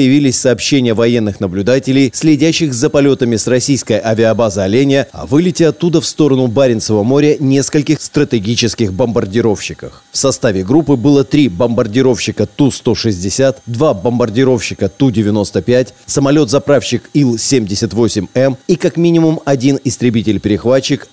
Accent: native